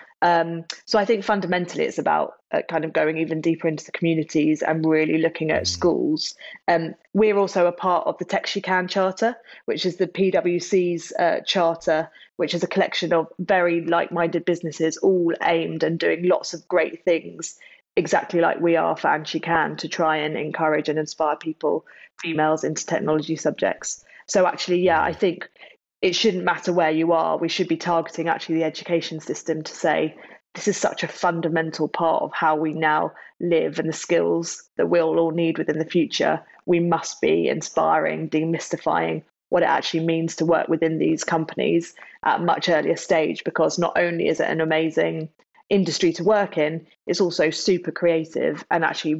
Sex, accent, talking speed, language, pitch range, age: female, British, 185 wpm, English, 160-175 Hz, 20-39